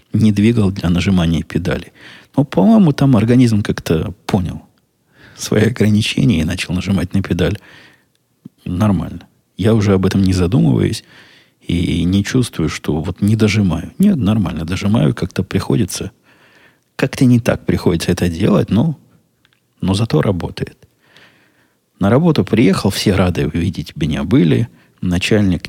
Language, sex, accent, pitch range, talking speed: Russian, male, native, 90-110 Hz, 130 wpm